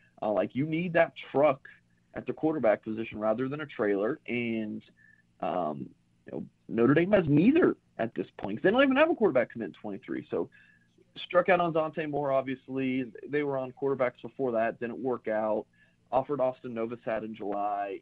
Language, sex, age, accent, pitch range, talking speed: English, male, 40-59, American, 100-130 Hz, 185 wpm